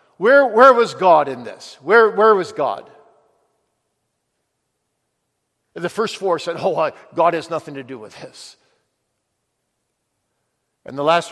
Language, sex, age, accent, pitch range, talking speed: English, male, 50-69, American, 155-230 Hz, 135 wpm